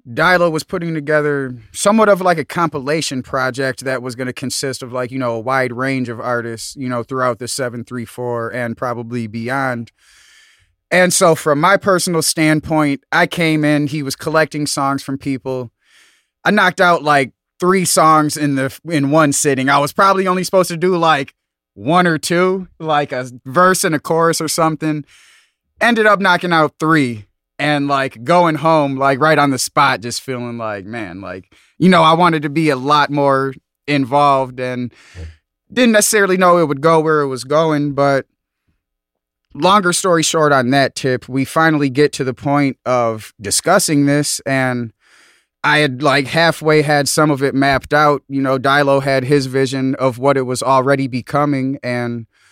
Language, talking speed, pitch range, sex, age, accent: English, 180 wpm, 130-160 Hz, male, 20-39, American